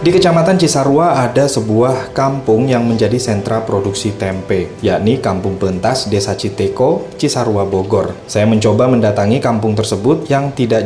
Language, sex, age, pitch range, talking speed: Indonesian, male, 20-39, 105-130 Hz, 140 wpm